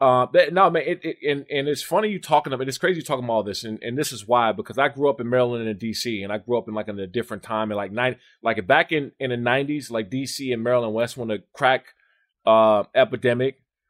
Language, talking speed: English, 275 wpm